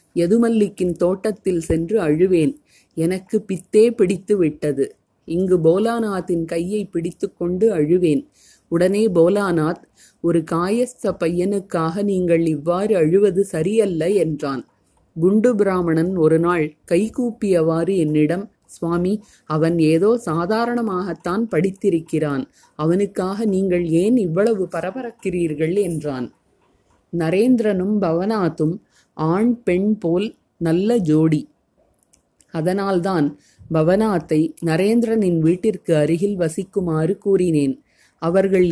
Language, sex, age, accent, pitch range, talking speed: Tamil, female, 30-49, native, 165-205 Hz, 90 wpm